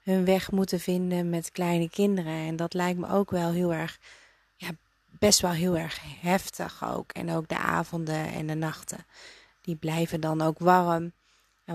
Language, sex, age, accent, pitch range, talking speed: Dutch, female, 30-49, Dutch, 170-195 Hz, 180 wpm